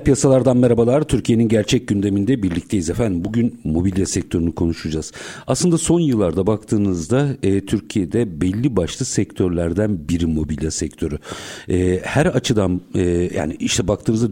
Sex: male